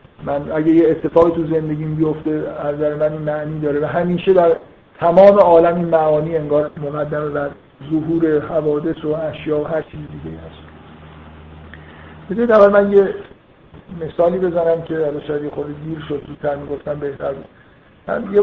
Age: 50-69